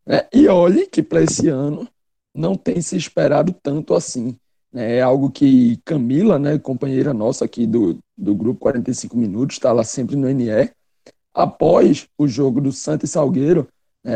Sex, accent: male, Brazilian